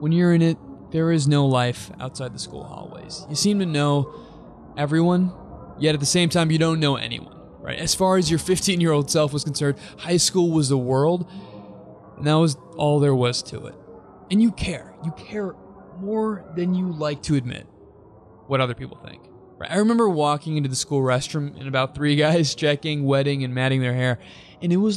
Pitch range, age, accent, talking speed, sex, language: 130-165 Hz, 20-39, American, 200 wpm, male, English